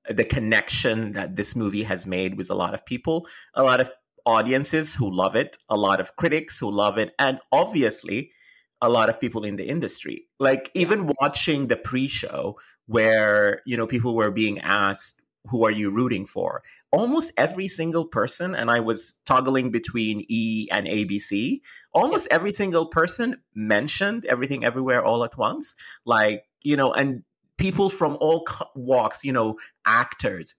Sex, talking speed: male, 165 wpm